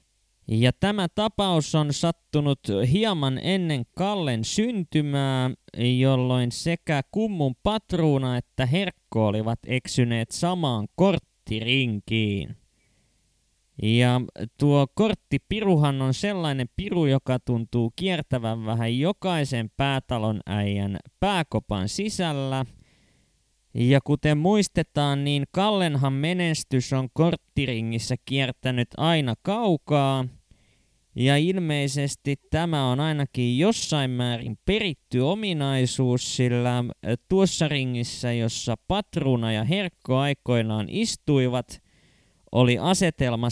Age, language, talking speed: 20-39, Finnish, 90 wpm